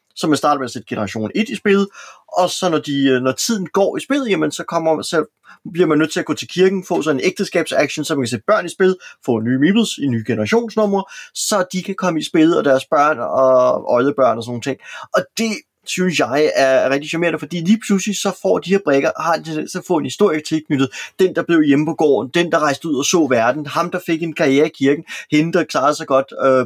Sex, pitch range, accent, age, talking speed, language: male, 135-185 Hz, native, 30-49, 245 wpm, Danish